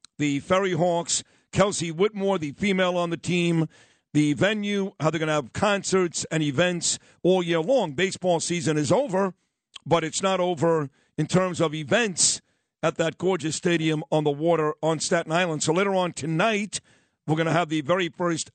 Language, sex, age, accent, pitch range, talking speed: English, male, 50-69, American, 155-185 Hz, 180 wpm